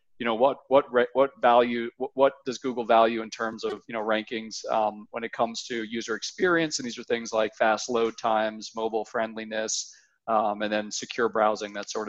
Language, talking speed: English, 205 wpm